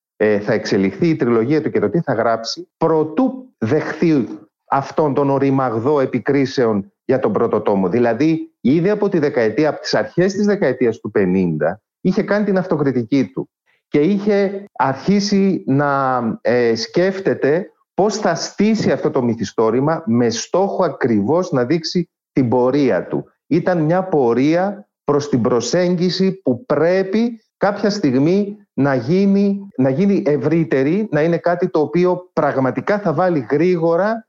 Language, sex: Greek, male